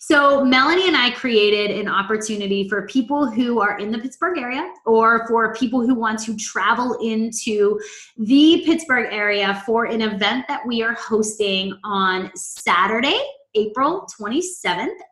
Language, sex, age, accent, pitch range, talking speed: English, female, 20-39, American, 215-305 Hz, 145 wpm